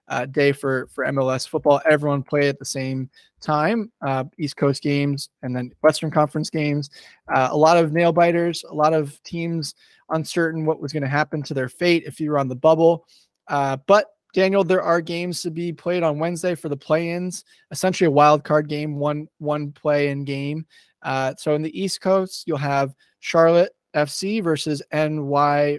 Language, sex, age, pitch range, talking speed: English, male, 20-39, 140-170 Hz, 190 wpm